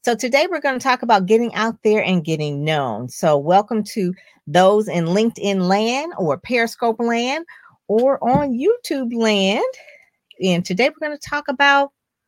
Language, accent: English, American